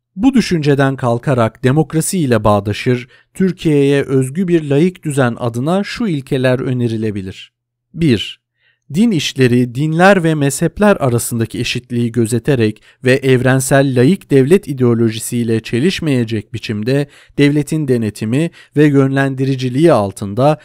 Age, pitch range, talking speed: 50-69, 115-155 Hz, 100 wpm